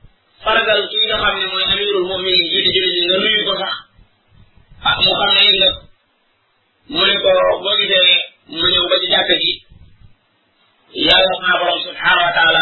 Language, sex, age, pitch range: French, male, 30-49, 175-210 Hz